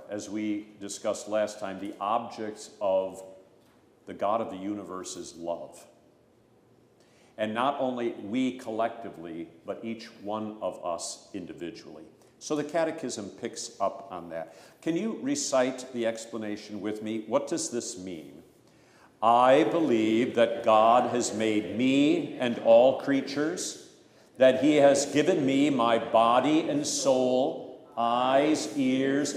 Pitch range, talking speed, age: 110-135 Hz, 135 wpm, 50-69